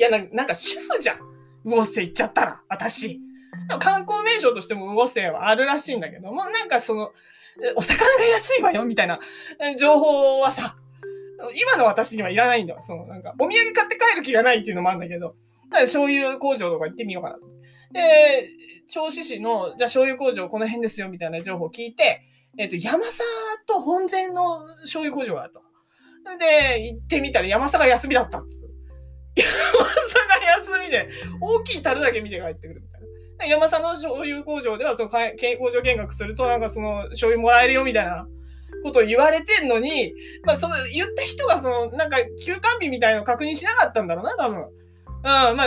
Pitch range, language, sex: 215-335 Hz, Japanese, female